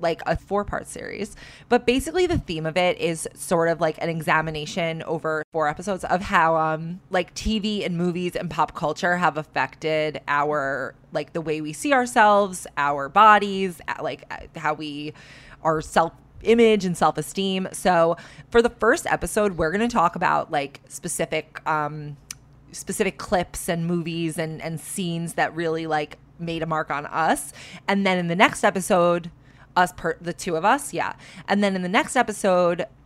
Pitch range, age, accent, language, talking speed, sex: 155-190 Hz, 20-39, American, English, 170 wpm, female